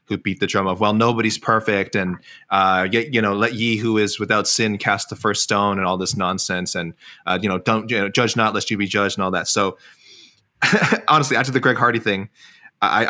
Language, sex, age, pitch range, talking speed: English, male, 20-39, 95-115 Hz, 220 wpm